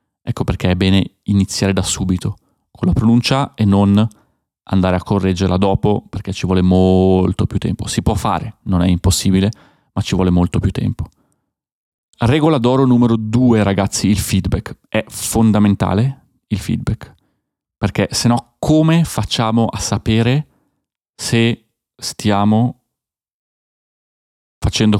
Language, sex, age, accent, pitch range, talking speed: Italian, male, 30-49, native, 95-115 Hz, 130 wpm